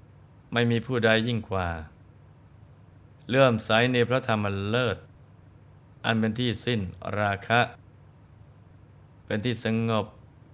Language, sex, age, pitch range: Thai, male, 20-39, 105-125 Hz